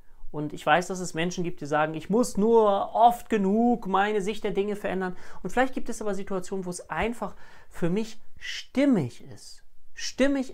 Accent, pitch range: German, 150-215 Hz